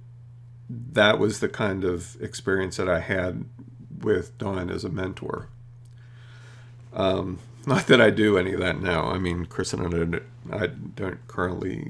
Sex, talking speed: male, 160 wpm